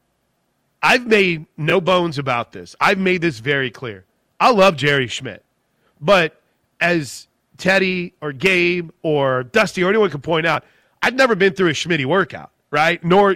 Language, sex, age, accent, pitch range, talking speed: English, male, 30-49, American, 140-185 Hz, 160 wpm